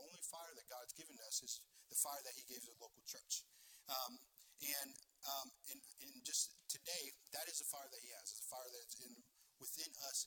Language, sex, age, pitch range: English, male, 40-59, 125-165 Hz